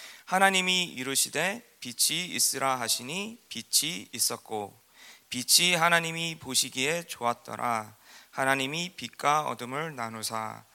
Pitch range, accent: 115-145 Hz, native